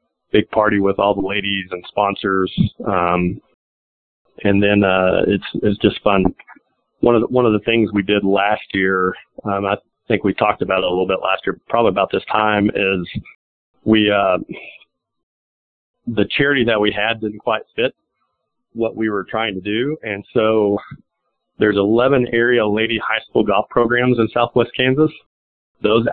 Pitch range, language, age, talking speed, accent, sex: 100-115 Hz, English, 40-59, 170 wpm, American, male